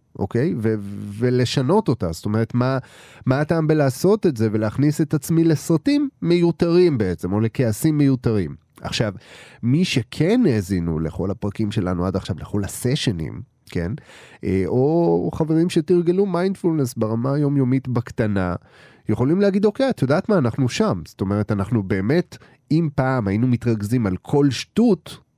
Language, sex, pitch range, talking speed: Hebrew, male, 110-160 Hz, 140 wpm